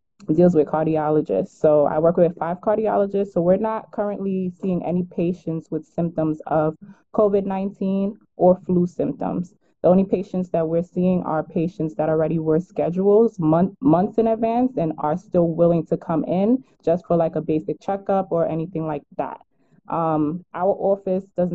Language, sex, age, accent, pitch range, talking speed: English, female, 20-39, American, 155-185 Hz, 165 wpm